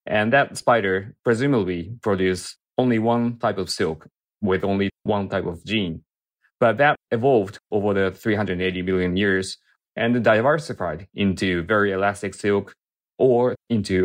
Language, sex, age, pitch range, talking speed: English, male, 30-49, 95-125 Hz, 135 wpm